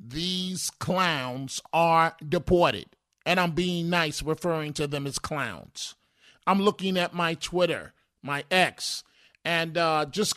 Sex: male